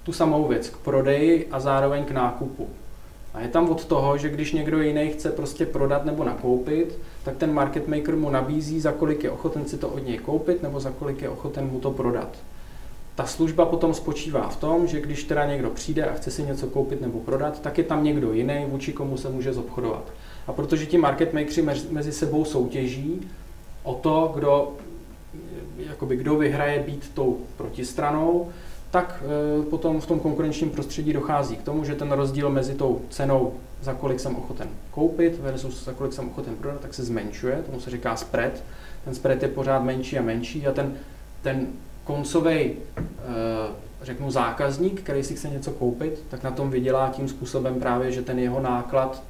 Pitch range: 130-155 Hz